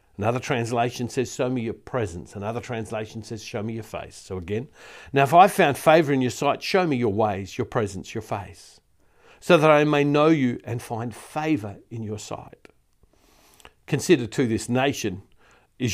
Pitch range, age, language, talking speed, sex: 115-155 Hz, 50-69, English, 185 wpm, male